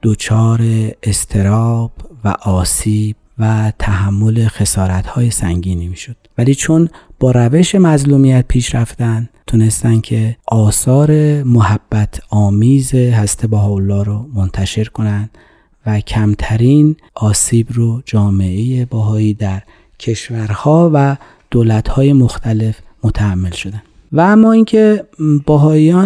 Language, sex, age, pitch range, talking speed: Persian, male, 40-59, 105-130 Hz, 105 wpm